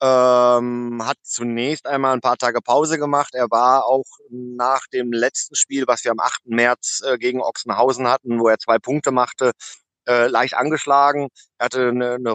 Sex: male